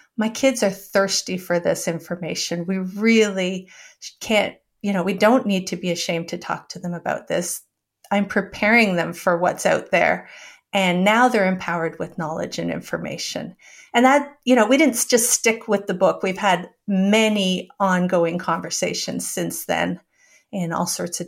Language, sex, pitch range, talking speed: English, female, 180-225 Hz, 170 wpm